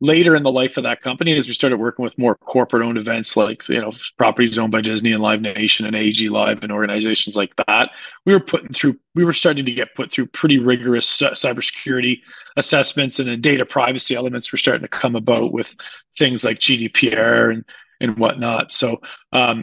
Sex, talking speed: male, 205 wpm